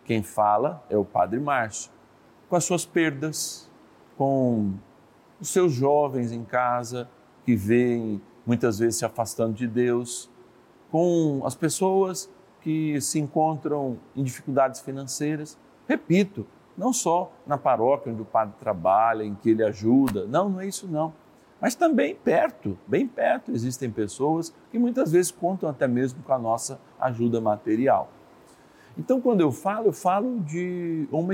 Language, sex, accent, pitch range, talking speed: Portuguese, male, Brazilian, 115-165 Hz, 145 wpm